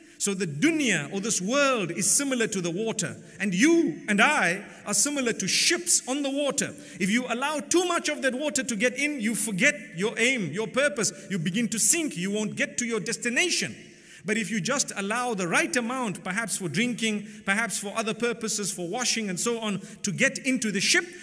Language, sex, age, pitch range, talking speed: English, male, 50-69, 185-250 Hz, 210 wpm